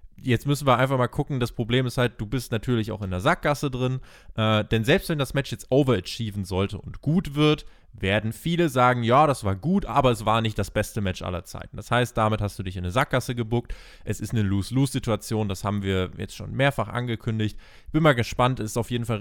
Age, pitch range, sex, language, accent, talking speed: 20-39, 100-125 Hz, male, German, German, 235 wpm